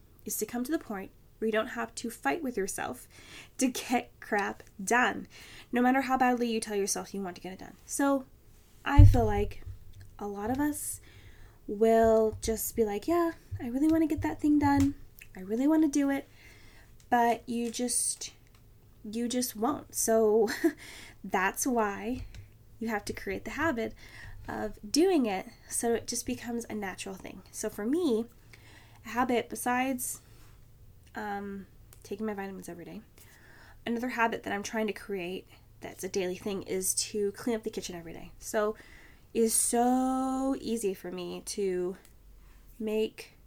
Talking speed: 165 wpm